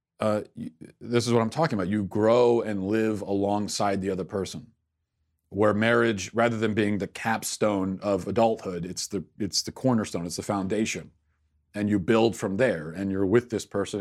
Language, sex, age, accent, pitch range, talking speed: English, male, 40-59, American, 95-120 Hz, 180 wpm